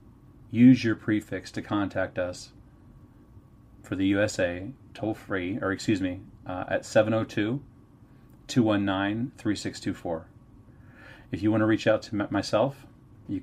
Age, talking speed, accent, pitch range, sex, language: 30-49, 110 wpm, American, 100-125 Hz, male, English